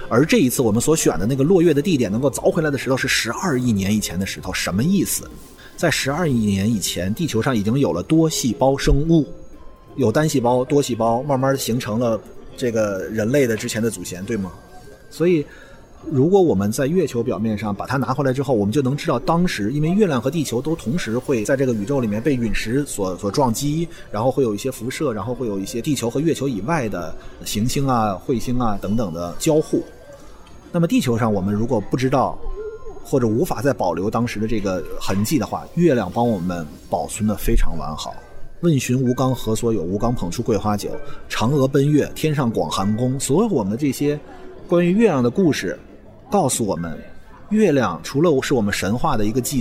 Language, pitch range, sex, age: Chinese, 105-145 Hz, male, 30-49